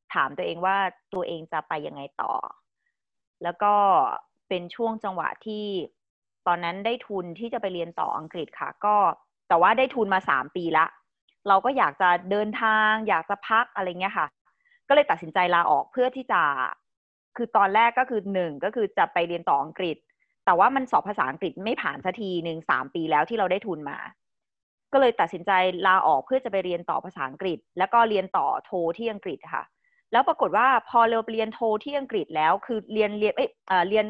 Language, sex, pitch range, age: Thai, female, 180-240 Hz, 20-39